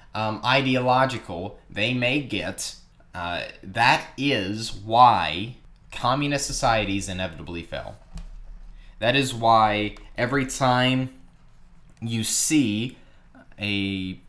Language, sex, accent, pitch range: English, male, American, 105-140 Hz